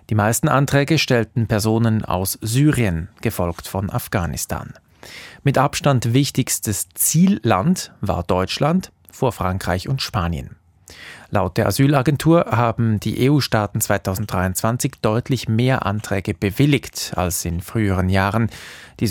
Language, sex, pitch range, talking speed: German, male, 95-125 Hz, 115 wpm